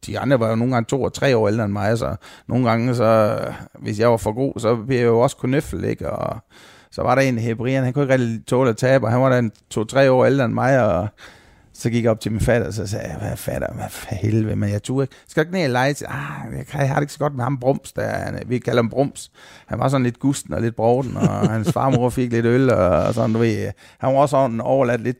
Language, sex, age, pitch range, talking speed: Danish, male, 30-49, 110-130 Hz, 270 wpm